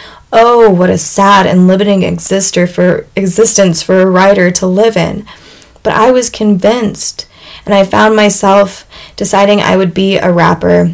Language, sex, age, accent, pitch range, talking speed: English, female, 20-39, American, 180-210 Hz, 155 wpm